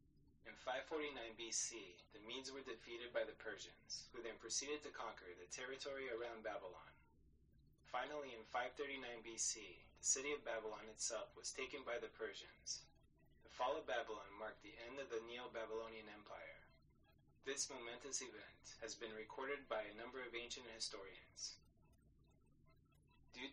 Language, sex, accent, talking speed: English, male, American, 145 wpm